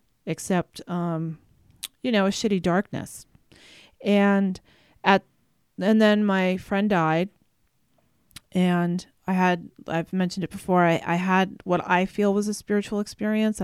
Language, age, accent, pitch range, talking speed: English, 30-49, American, 175-205 Hz, 135 wpm